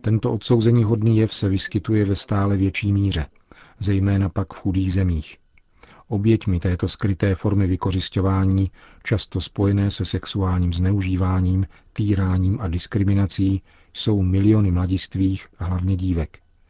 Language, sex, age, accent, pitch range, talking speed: Czech, male, 40-59, native, 90-105 Hz, 120 wpm